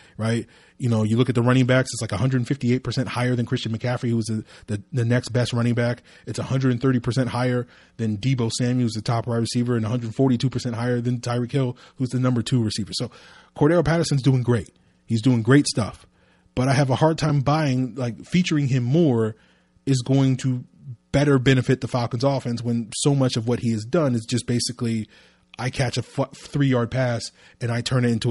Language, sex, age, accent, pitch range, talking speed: English, male, 20-39, American, 115-135 Hz, 215 wpm